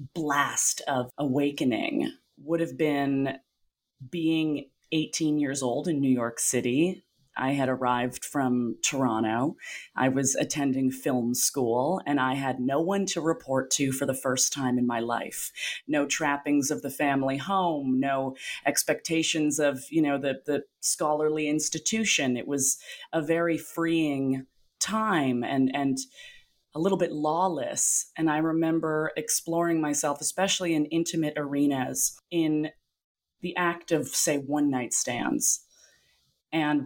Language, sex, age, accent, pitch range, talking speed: English, female, 30-49, American, 130-160 Hz, 135 wpm